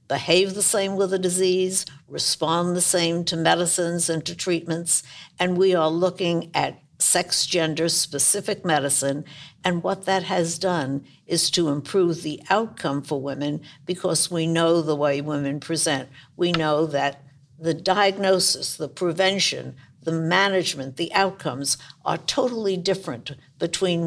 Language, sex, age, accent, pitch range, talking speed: English, female, 60-79, American, 150-185 Hz, 140 wpm